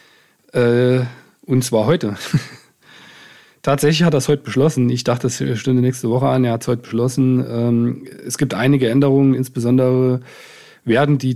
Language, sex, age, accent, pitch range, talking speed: German, male, 40-59, German, 120-135 Hz, 160 wpm